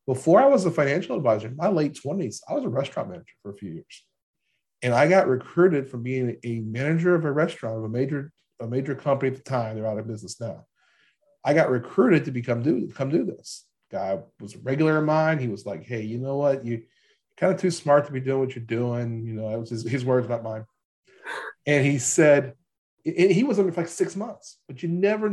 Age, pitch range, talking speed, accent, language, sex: 40-59, 120-150 Hz, 235 wpm, American, English, male